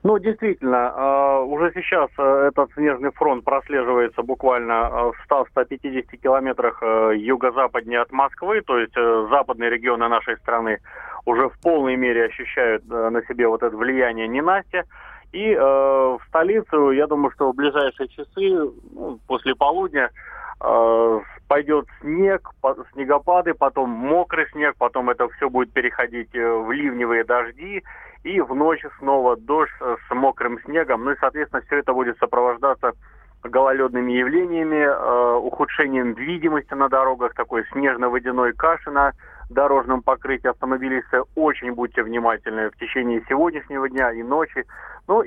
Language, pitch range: Russian, 125-150 Hz